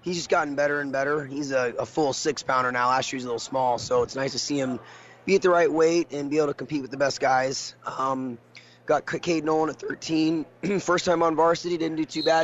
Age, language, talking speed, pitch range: 20-39, English, 255 wpm, 135-155 Hz